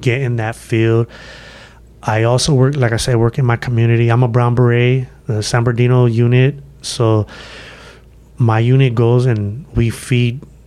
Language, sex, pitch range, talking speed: English, male, 115-130 Hz, 165 wpm